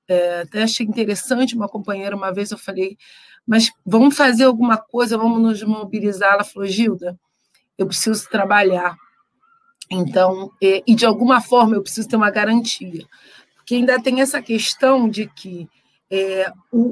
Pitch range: 195-240 Hz